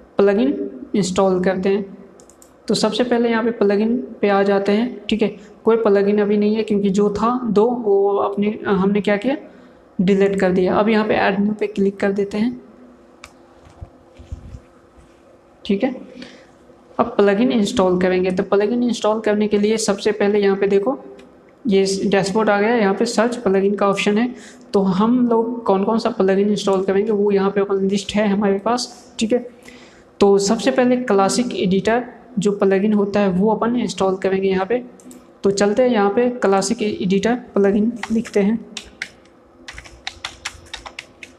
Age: 20-39